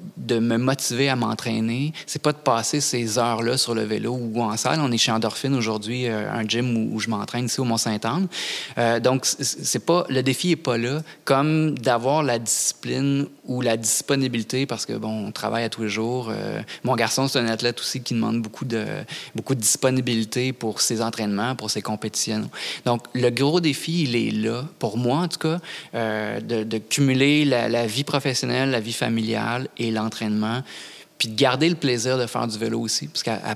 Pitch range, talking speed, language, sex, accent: 115-135 Hz, 205 wpm, French, male, Canadian